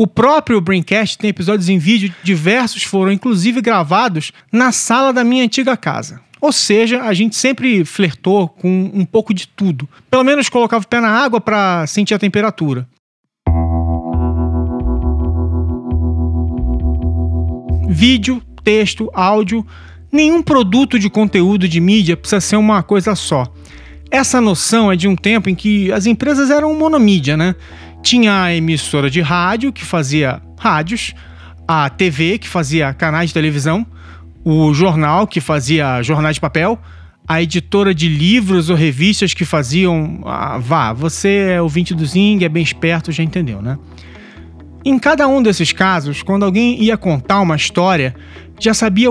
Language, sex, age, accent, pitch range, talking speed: Portuguese, male, 40-59, Brazilian, 155-215 Hz, 150 wpm